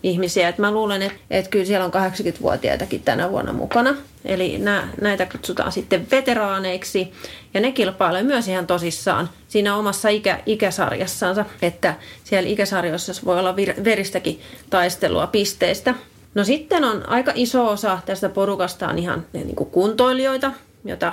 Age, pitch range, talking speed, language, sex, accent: 30-49, 180-220 Hz, 145 wpm, Finnish, female, native